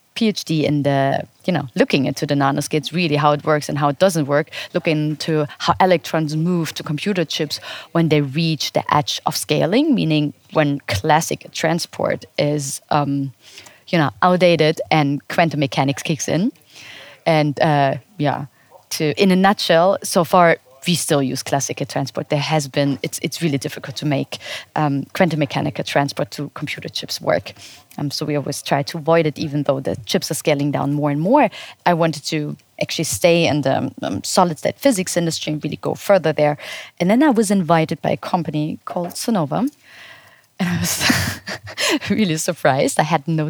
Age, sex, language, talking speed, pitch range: 30-49, female, English, 180 wpm, 145-175 Hz